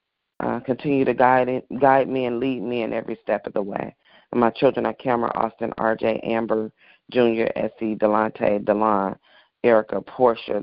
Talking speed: 165 wpm